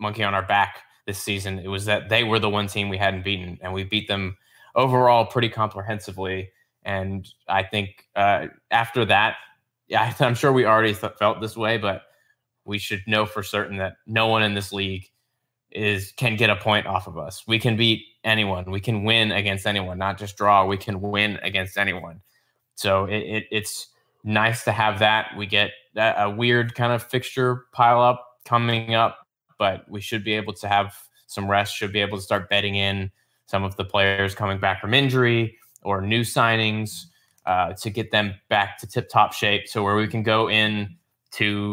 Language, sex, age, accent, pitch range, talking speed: English, male, 20-39, American, 100-110 Hz, 200 wpm